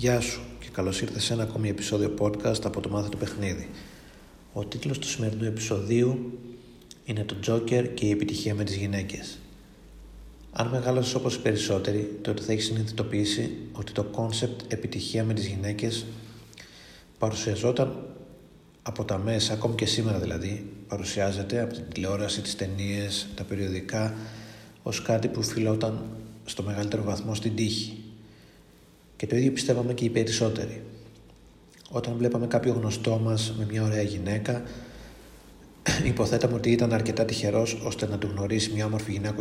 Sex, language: male, Greek